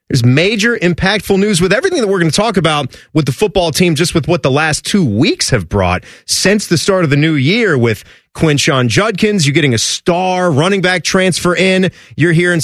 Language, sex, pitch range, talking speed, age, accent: English, male, 145-210 Hz, 220 wpm, 30-49, American